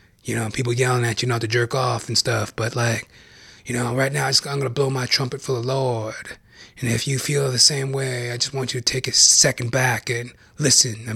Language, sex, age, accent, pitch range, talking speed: English, male, 30-49, American, 110-135 Hz, 260 wpm